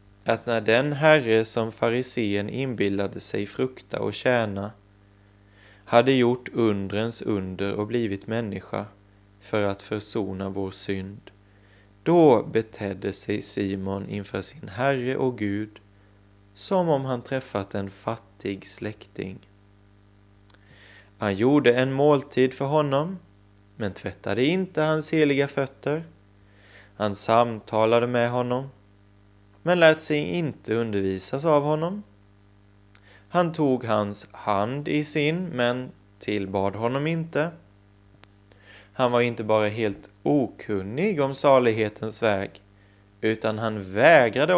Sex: male